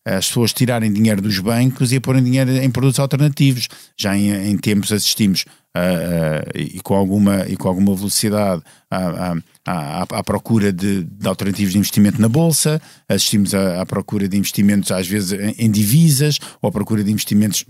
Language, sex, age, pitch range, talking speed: Portuguese, male, 50-69, 100-145 Hz, 175 wpm